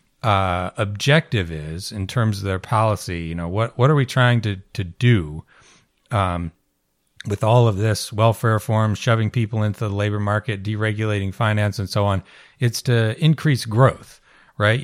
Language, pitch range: English, 95-125 Hz